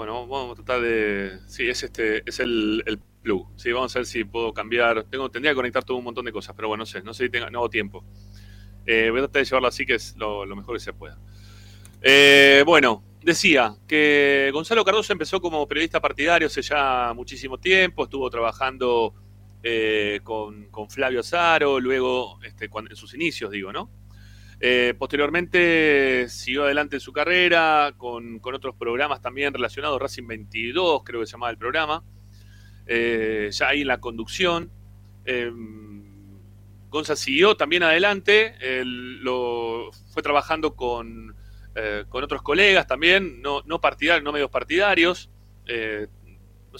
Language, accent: Spanish, Argentinian